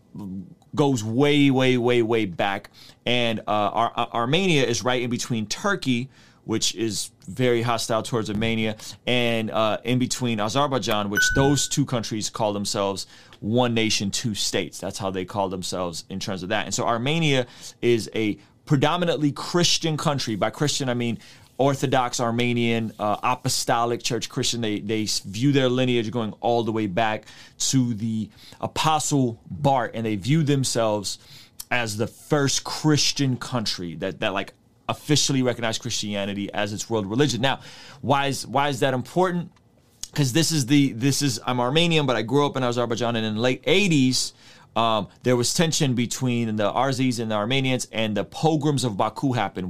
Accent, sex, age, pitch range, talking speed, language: American, male, 30-49, 110-135 Hz, 165 wpm, English